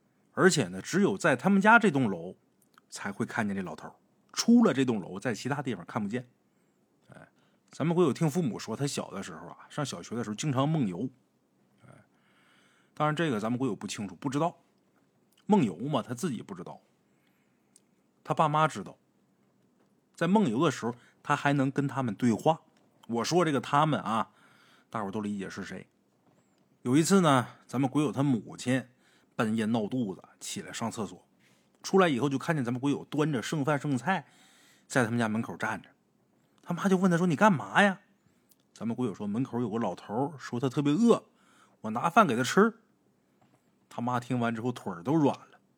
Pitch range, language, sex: 125-185 Hz, Chinese, male